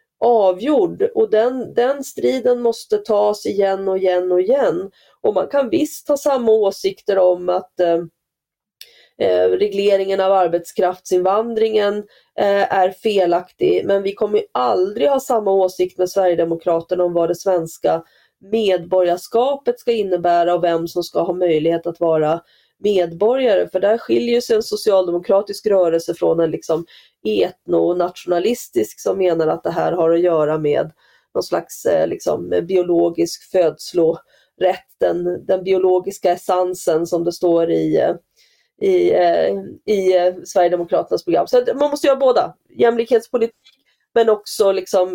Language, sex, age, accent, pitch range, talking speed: Swedish, female, 30-49, native, 170-225 Hz, 130 wpm